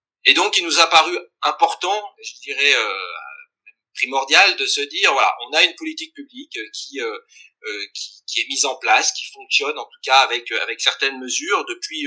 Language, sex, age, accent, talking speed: French, male, 30-49, French, 190 wpm